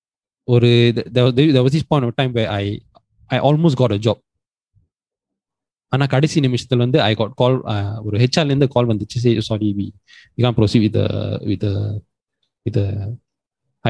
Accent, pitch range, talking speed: native, 105-130 Hz, 175 wpm